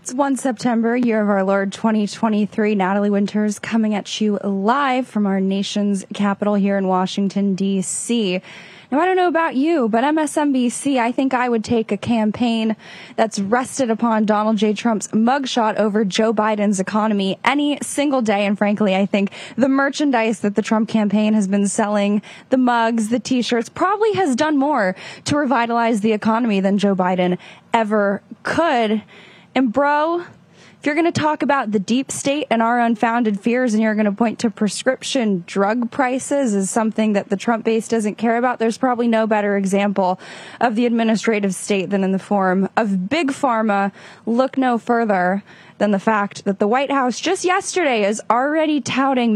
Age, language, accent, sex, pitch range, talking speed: 10-29, English, American, female, 205-255 Hz, 175 wpm